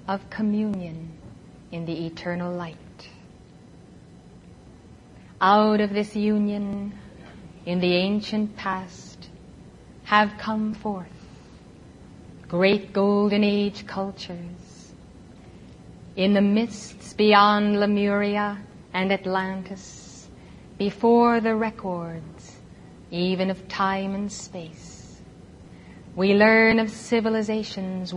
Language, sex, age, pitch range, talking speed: English, female, 30-49, 185-215 Hz, 85 wpm